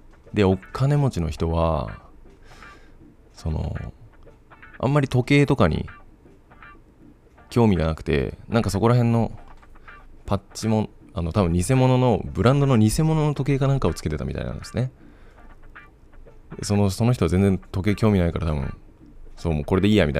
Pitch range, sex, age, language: 85-110 Hz, male, 20-39, Japanese